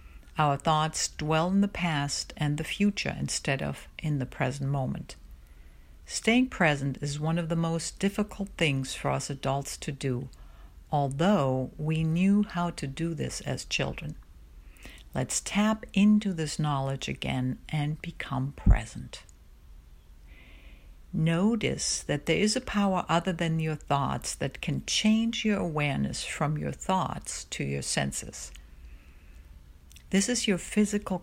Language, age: English, 60-79